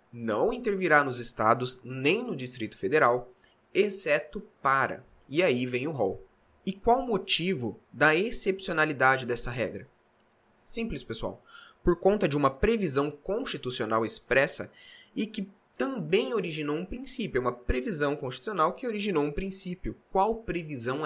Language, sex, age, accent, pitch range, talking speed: Portuguese, male, 20-39, Brazilian, 125-190 Hz, 135 wpm